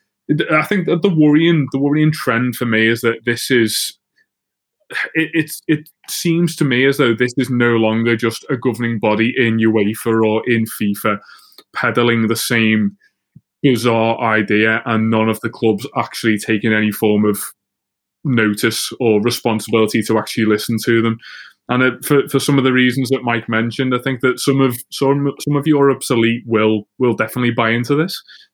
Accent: British